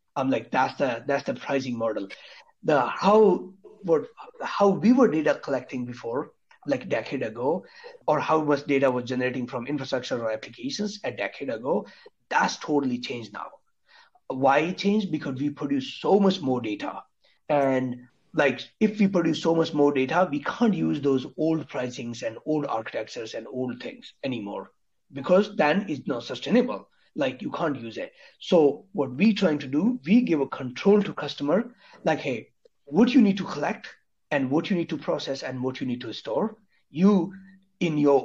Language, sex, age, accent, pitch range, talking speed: English, male, 60-79, Indian, 130-190 Hz, 180 wpm